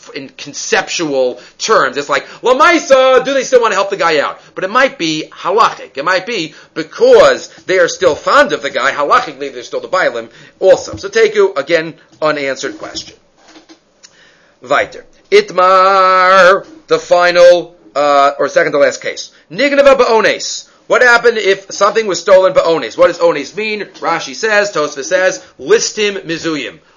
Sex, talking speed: male, 160 wpm